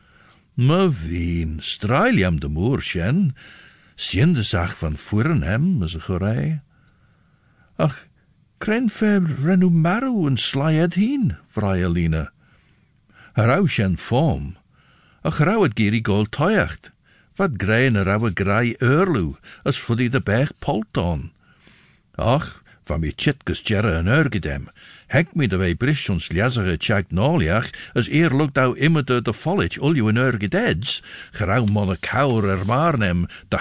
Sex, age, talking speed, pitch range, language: male, 60-79, 120 wpm, 95-150 Hz, English